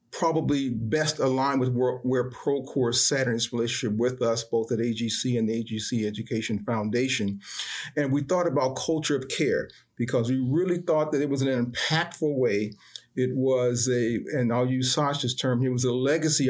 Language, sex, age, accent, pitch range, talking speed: English, male, 40-59, American, 125-145 Hz, 170 wpm